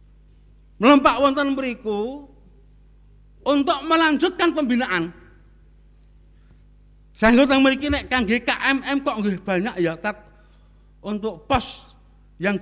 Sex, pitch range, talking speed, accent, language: male, 185-230 Hz, 90 wpm, native, Indonesian